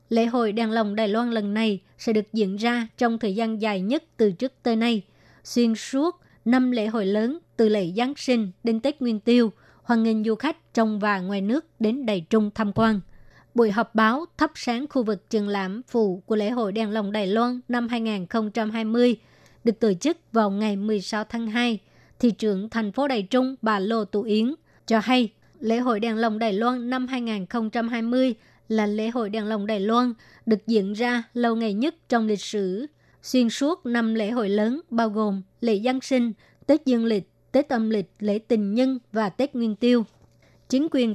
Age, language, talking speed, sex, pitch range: 20-39, Vietnamese, 200 wpm, male, 215-245 Hz